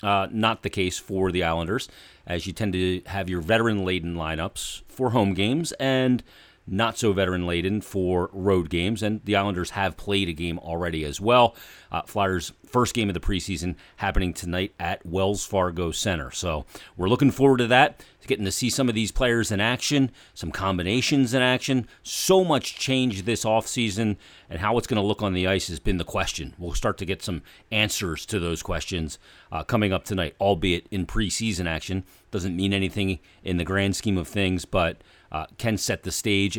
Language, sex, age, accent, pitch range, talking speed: English, male, 40-59, American, 90-115 Hz, 190 wpm